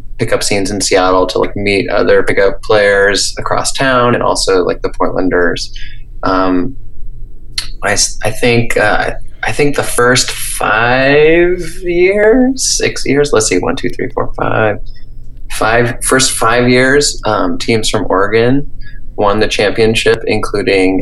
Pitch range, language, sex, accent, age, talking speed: 95-125 Hz, English, male, American, 20-39, 140 wpm